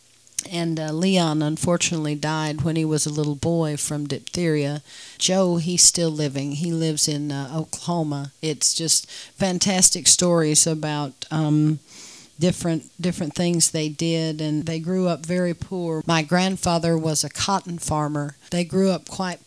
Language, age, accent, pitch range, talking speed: English, 40-59, American, 150-165 Hz, 150 wpm